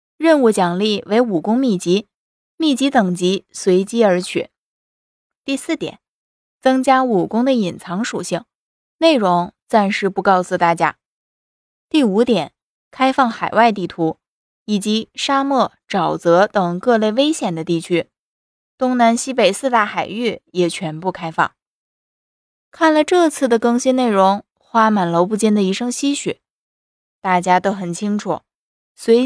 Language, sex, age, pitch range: Chinese, female, 20-39, 185-250 Hz